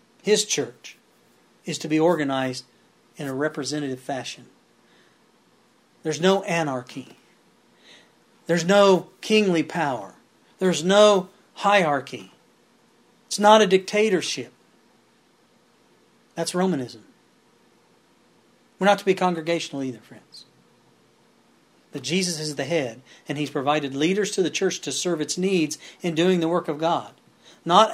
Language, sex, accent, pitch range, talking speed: English, male, American, 150-195 Hz, 120 wpm